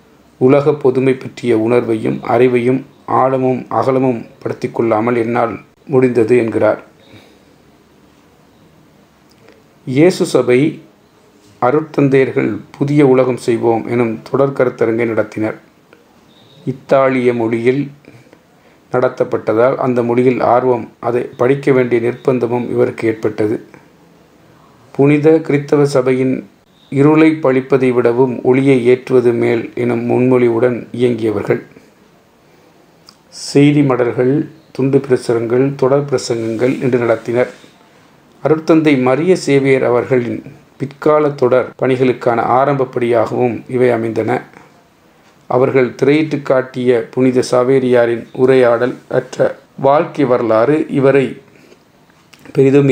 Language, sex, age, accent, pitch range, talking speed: Tamil, male, 40-59, native, 120-135 Hz, 85 wpm